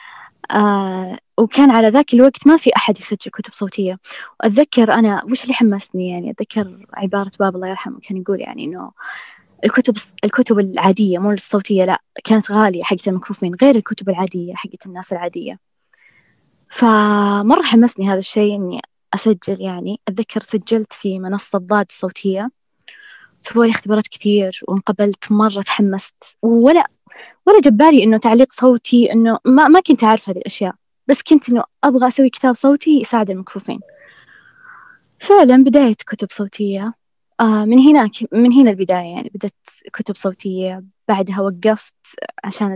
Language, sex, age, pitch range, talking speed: Arabic, female, 20-39, 195-245 Hz, 145 wpm